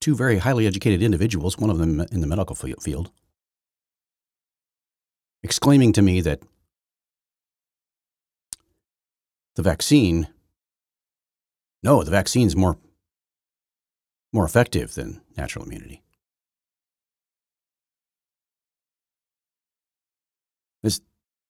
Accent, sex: American, male